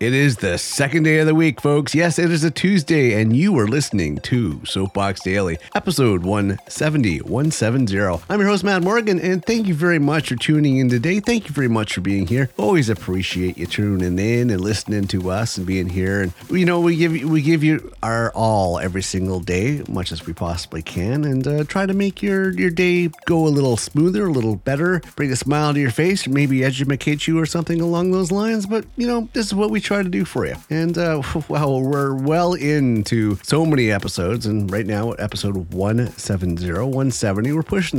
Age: 30-49